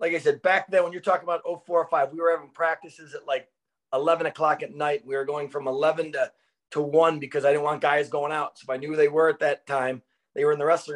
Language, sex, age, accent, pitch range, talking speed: English, male, 30-49, American, 150-180 Hz, 285 wpm